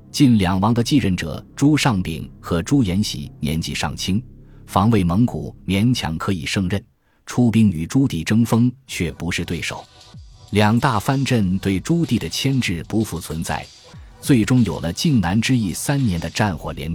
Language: Chinese